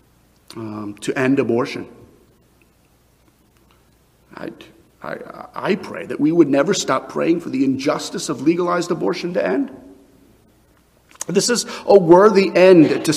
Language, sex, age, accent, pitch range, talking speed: English, male, 40-59, American, 140-235 Hz, 130 wpm